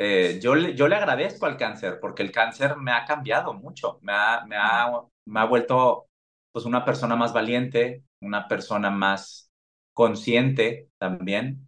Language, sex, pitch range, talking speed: Spanish, male, 95-135 Hz, 165 wpm